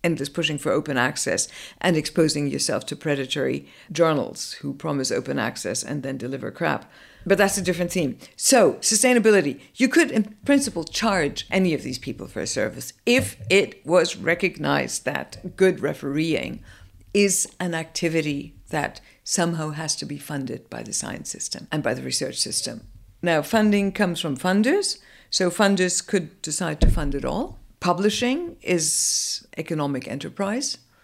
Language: English